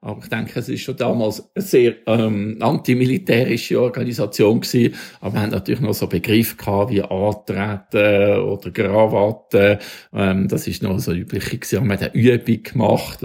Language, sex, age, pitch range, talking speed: German, male, 50-69, 115-145 Hz, 160 wpm